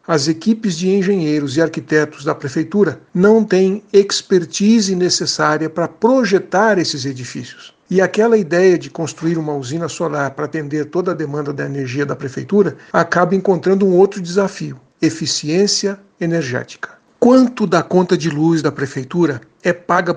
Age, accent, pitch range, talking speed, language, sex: 60-79, Brazilian, 155-195 Hz, 145 wpm, Portuguese, male